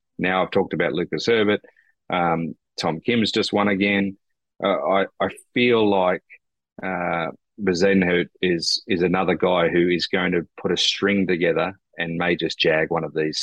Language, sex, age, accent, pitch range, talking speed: English, male, 30-49, Australian, 95-115 Hz, 170 wpm